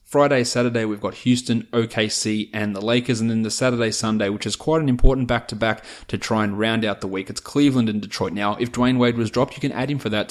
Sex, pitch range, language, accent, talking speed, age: male, 105-115 Hz, English, Australian, 255 wpm, 20-39